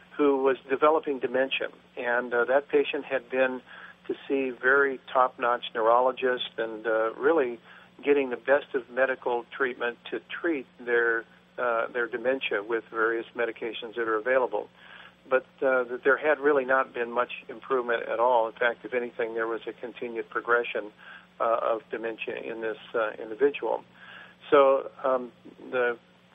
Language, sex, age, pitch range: English, male, 50-69, 120-145 Hz